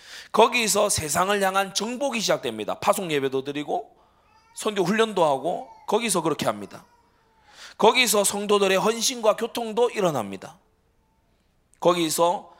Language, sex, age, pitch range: Korean, male, 30-49, 130-210 Hz